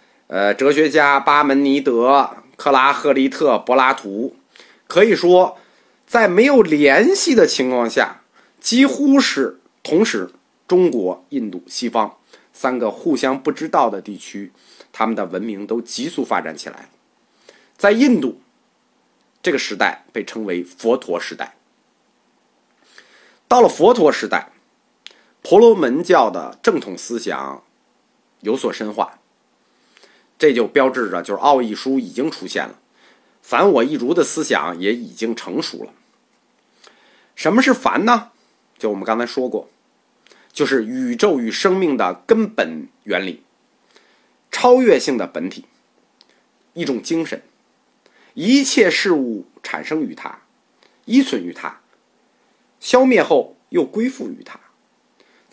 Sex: male